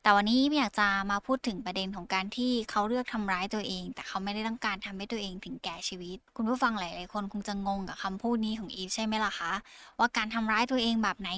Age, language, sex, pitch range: 10-29, Thai, female, 190-230 Hz